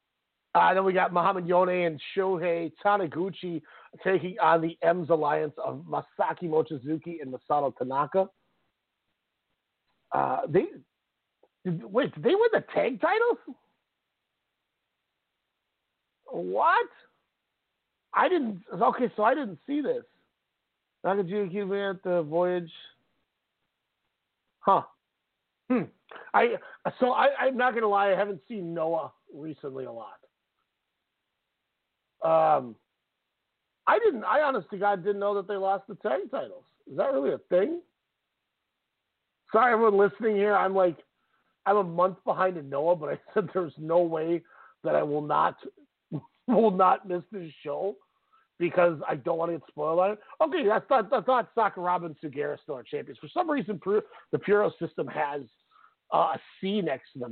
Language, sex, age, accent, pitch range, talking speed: English, male, 50-69, American, 165-225 Hz, 145 wpm